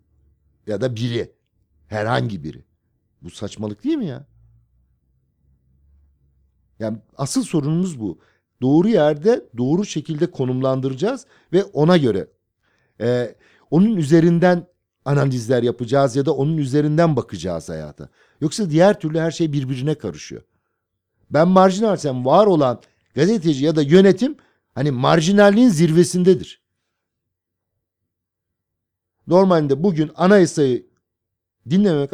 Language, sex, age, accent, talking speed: Turkish, male, 50-69, native, 105 wpm